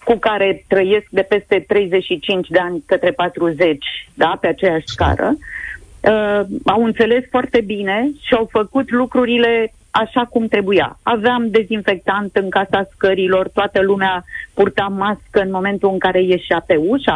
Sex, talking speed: female, 145 wpm